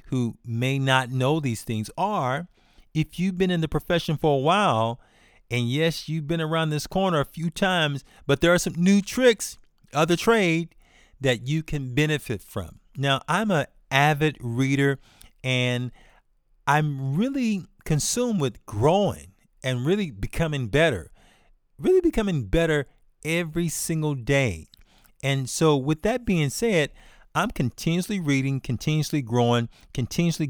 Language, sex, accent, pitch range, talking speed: English, male, American, 130-175 Hz, 145 wpm